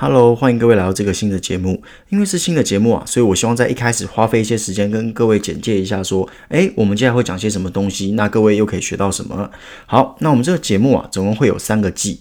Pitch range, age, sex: 100-120 Hz, 20-39, male